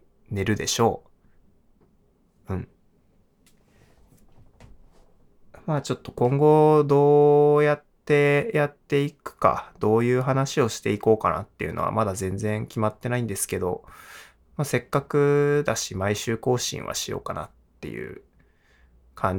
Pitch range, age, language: 105-130 Hz, 20-39, Japanese